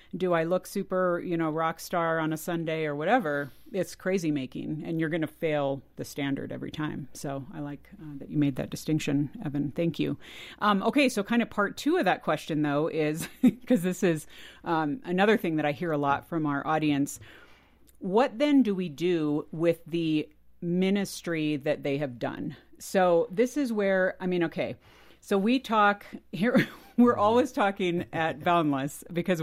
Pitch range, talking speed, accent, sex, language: 155-200 Hz, 190 wpm, American, female, English